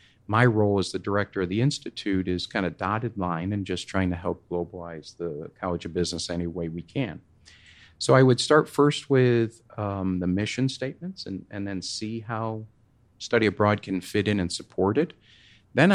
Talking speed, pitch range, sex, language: 190 wpm, 100-130 Hz, male, English